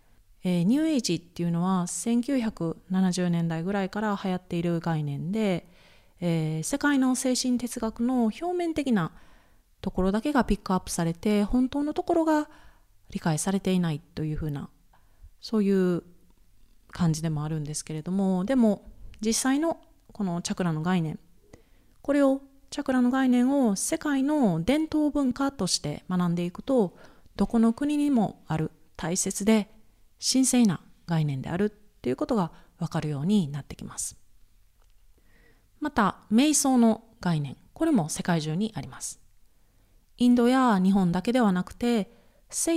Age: 30-49